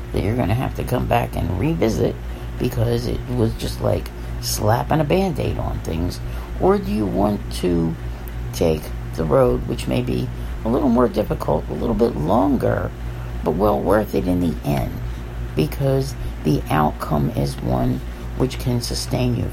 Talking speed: 170 wpm